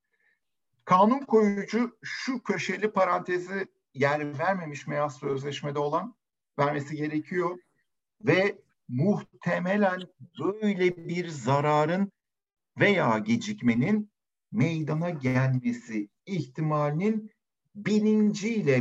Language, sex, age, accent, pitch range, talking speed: Turkish, male, 60-79, native, 140-195 Hz, 75 wpm